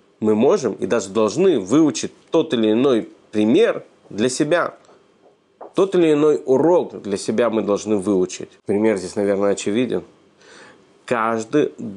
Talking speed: 130 wpm